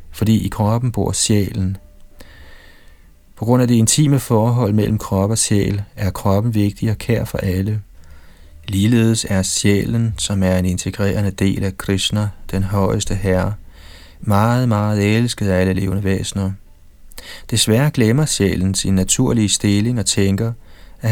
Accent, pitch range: native, 90-110 Hz